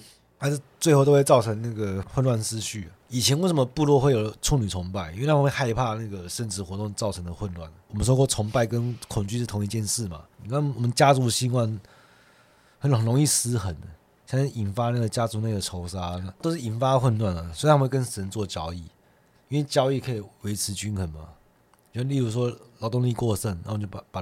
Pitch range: 95-125 Hz